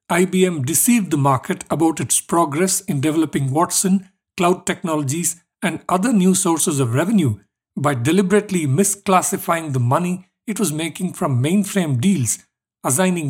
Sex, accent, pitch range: male, Indian, 145-185 Hz